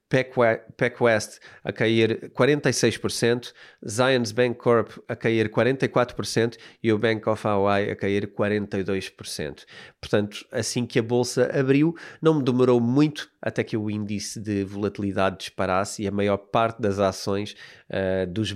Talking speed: 140 wpm